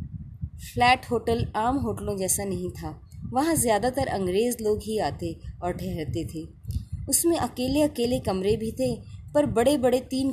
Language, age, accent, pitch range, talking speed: Hindi, 20-39, native, 190-255 Hz, 150 wpm